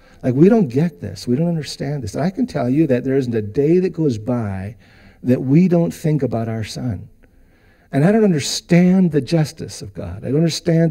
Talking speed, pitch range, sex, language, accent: 215 wpm, 115-170 Hz, male, English, American